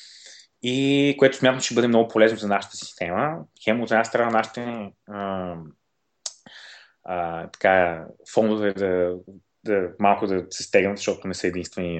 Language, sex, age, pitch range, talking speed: Bulgarian, male, 20-39, 95-125 Hz, 155 wpm